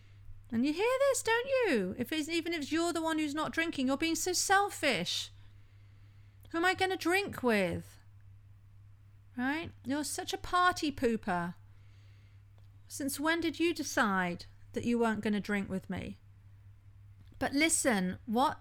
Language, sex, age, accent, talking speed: English, female, 40-59, British, 160 wpm